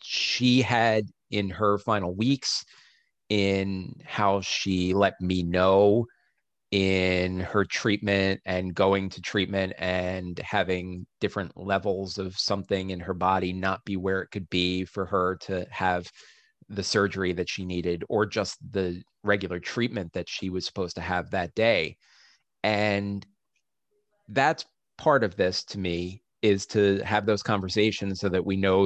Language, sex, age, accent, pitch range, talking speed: English, male, 30-49, American, 95-120 Hz, 150 wpm